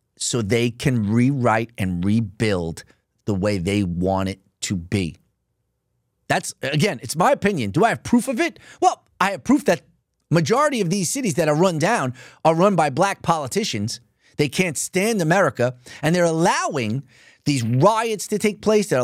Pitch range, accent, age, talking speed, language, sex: 125-190 Hz, American, 30-49, 175 wpm, English, male